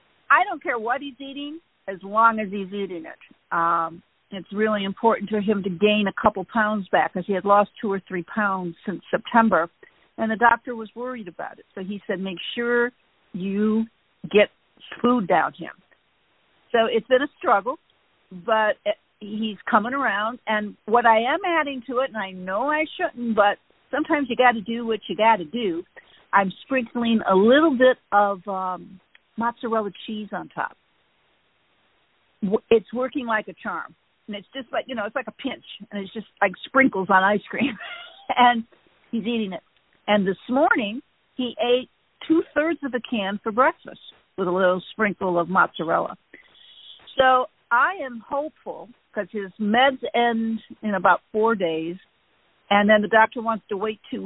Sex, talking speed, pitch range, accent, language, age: female, 175 wpm, 195-245 Hz, American, English, 50-69